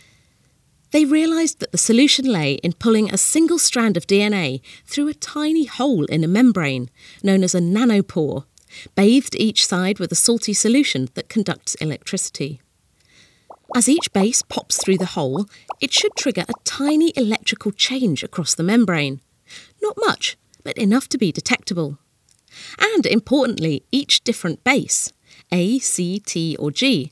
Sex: female